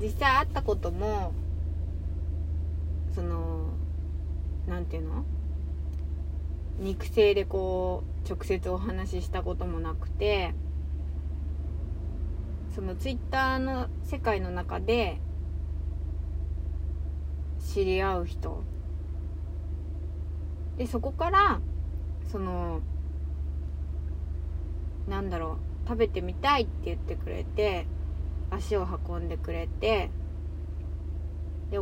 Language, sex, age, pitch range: Japanese, female, 20-39, 75-85 Hz